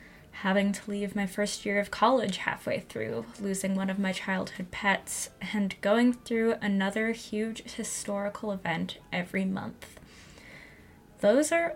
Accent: American